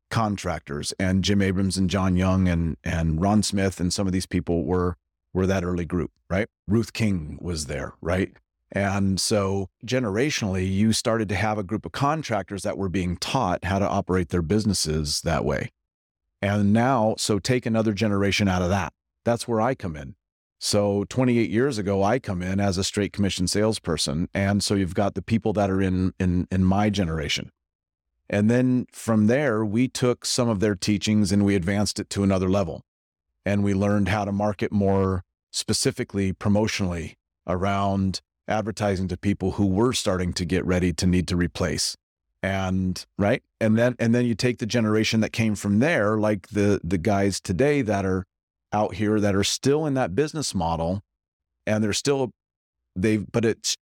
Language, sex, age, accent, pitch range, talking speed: English, male, 40-59, American, 90-110 Hz, 185 wpm